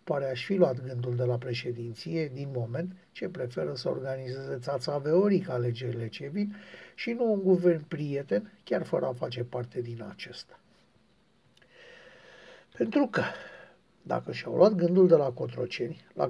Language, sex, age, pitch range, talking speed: Romanian, male, 60-79, 130-185 Hz, 150 wpm